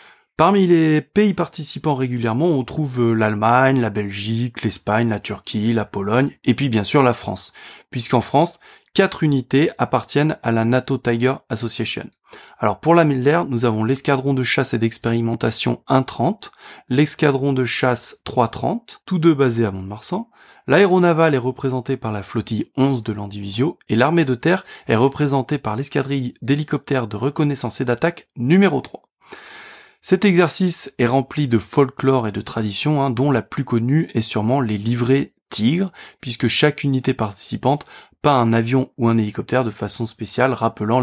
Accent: French